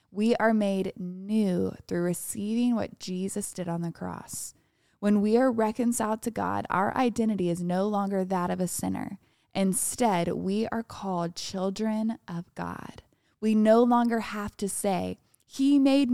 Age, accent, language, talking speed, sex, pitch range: 20-39, American, English, 155 wpm, female, 180-220 Hz